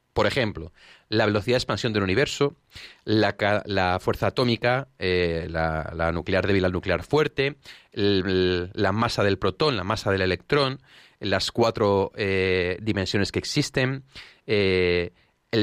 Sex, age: male, 30-49